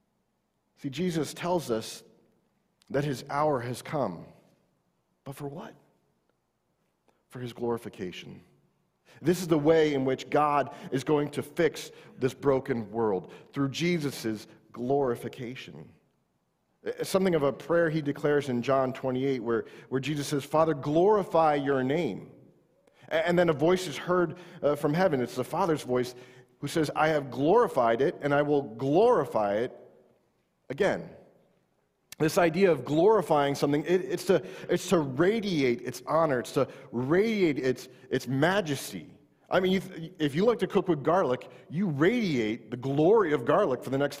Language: English